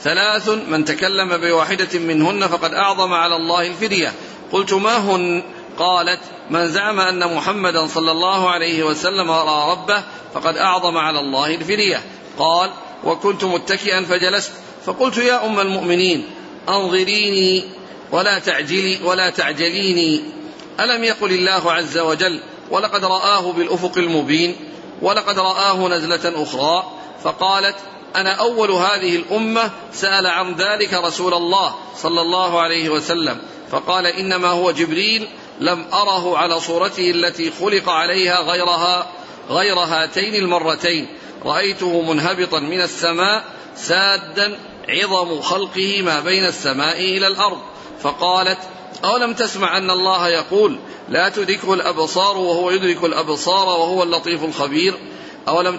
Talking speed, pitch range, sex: 120 wpm, 170-195 Hz, male